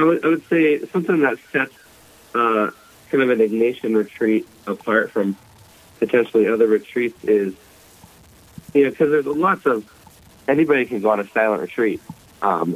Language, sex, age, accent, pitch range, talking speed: English, male, 30-49, American, 100-125 Hz, 160 wpm